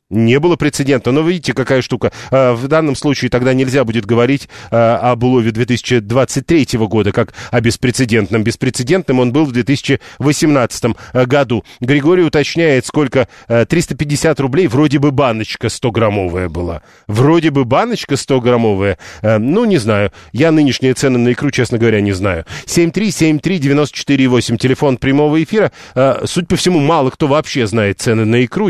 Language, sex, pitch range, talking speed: Russian, male, 115-145 Hz, 145 wpm